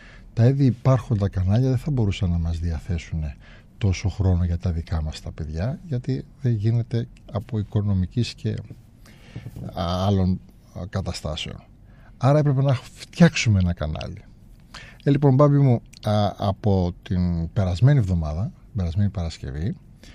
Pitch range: 90-120 Hz